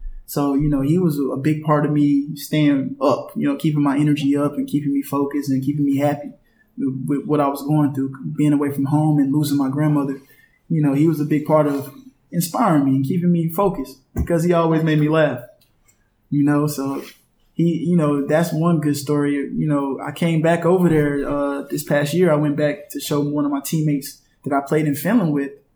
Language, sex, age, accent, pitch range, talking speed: Hebrew, male, 20-39, American, 140-155 Hz, 225 wpm